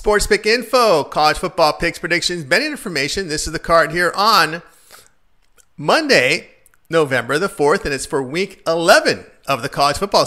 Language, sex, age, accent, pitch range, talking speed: English, male, 40-59, American, 145-180 Hz, 165 wpm